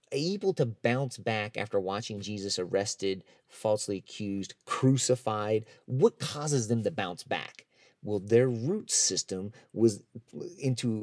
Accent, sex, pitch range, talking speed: American, male, 110-145 Hz, 125 wpm